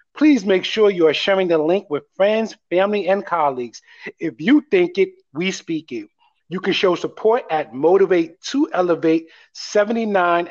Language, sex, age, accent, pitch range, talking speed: English, male, 30-49, American, 165-235 Hz, 160 wpm